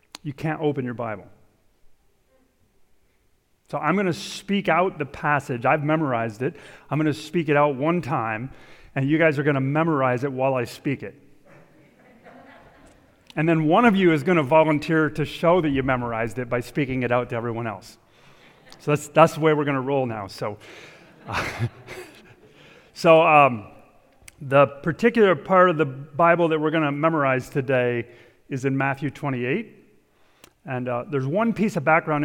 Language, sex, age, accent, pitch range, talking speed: English, male, 40-59, American, 125-155 Hz, 175 wpm